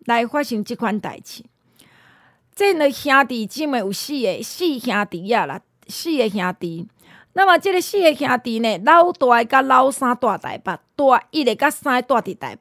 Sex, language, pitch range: female, Chinese, 230-310 Hz